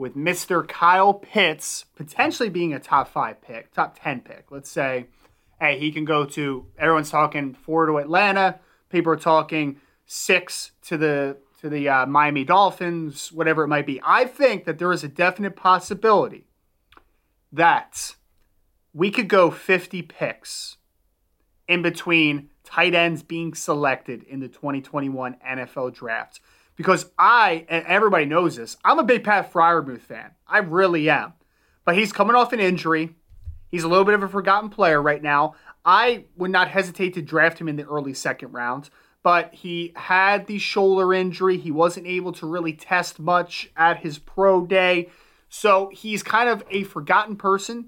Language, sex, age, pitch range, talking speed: English, male, 30-49, 145-185 Hz, 165 wpm